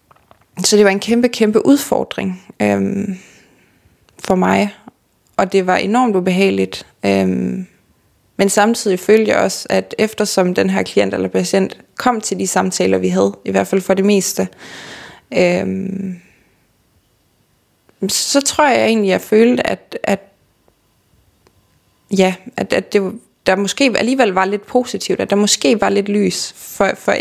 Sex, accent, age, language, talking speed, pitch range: female, native, 20-39, Danish, 150 wpm, 155-210 Hz